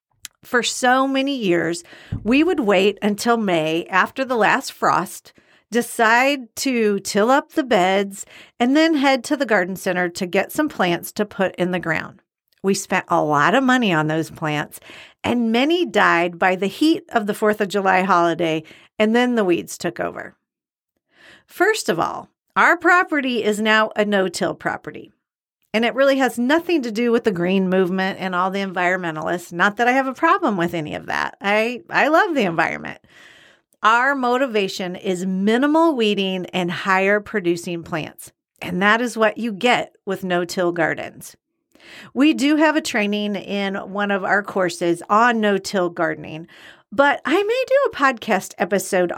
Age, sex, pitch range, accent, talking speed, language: 50-69, female, 180-250 Hz, American, 170 wpm, English